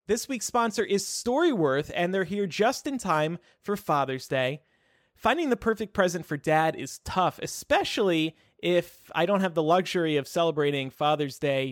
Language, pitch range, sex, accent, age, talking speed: English, 145-205 Hz, male, American, 30-49, 170 wpm